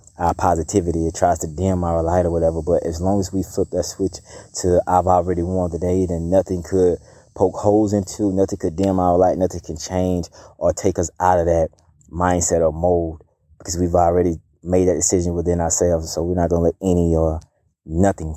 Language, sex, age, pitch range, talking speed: English, male, 20-39, 85-95 Hz, 205 wpm